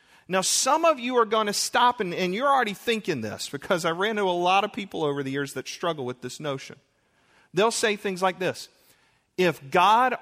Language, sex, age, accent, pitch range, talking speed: English, male, 40-59, American, 125-210 Hz, 215 wpm